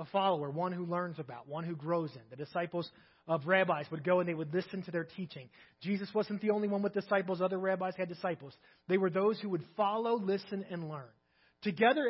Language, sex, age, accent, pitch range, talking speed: English, male, 30-49, American, 175-220 Hz, 220 wpm